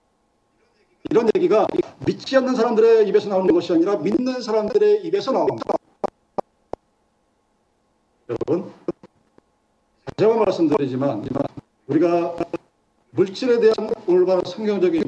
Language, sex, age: Korean, male, 50-69